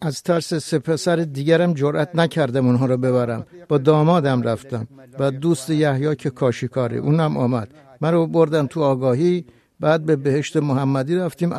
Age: 60-79